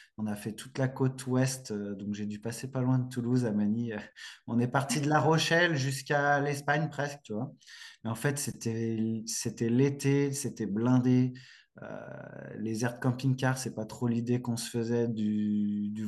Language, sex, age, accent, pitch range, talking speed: French, male, 20-39, French, 115-135 Hz, 185 wpm